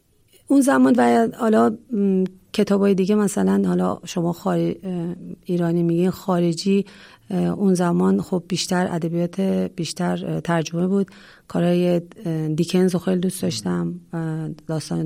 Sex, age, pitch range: female, 40-59, 170-195 Hz